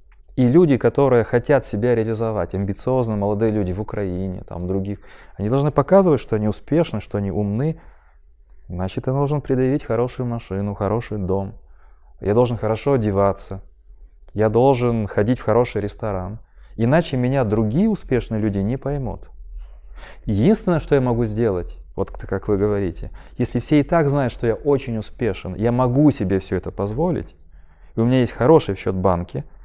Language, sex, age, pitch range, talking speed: Russian, male, 20-39, 95-130 Hz, 160 wpm